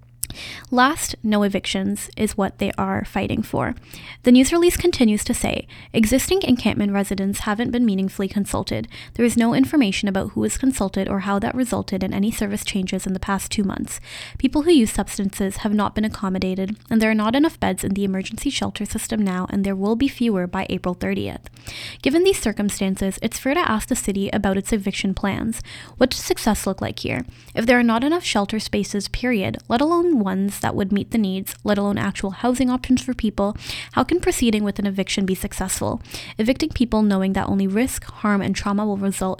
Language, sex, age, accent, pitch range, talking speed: English, female, 10-29, American, 195-245 Hz, 200 wpm